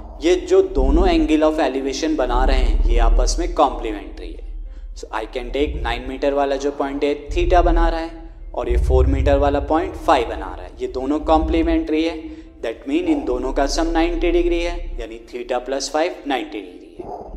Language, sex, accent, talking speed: Hindi, male, native, 130 wpm